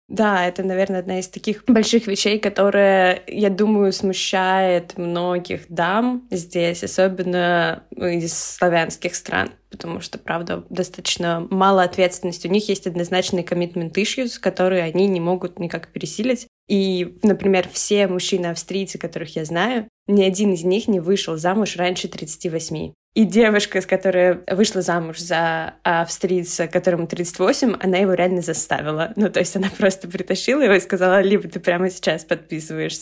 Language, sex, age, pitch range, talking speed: Russian, female, 20-39, 175-200 Hz, 150 wpm